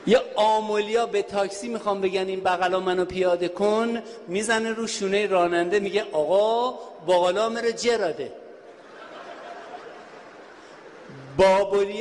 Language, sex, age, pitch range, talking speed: Persian, male, 50-69, 185-240 Hz, 100 wpm